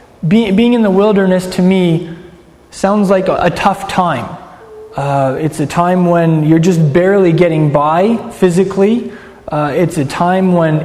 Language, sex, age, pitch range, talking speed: English, male, 20-39, 165-200 Hz, 150 wpm